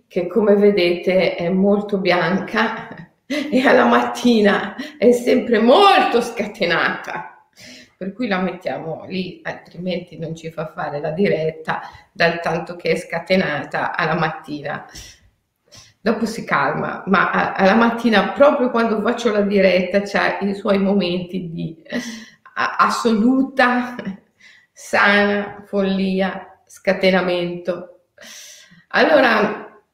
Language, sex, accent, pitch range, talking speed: Italian, female, native, 180-230 Hz, 105 wpm